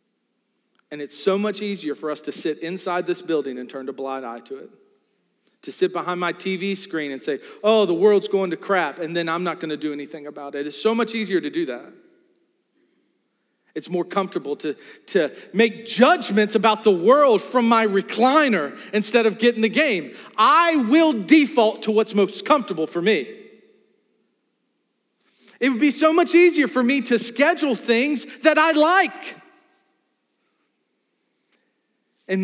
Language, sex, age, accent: English, male, 40-59, American